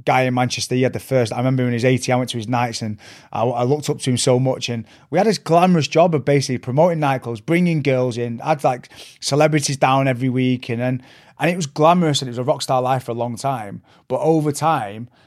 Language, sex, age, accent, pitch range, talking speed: English, male, 30-49, British, 125-150 Hz, 265 wpm